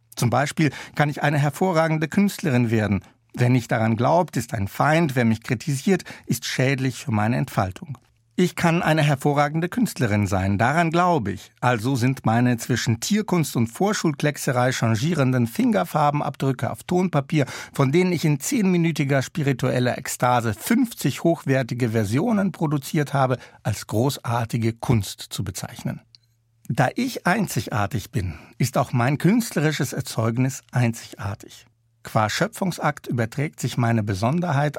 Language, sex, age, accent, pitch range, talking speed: German, male, 60-79, German, 115-155 Hz, 130 wpm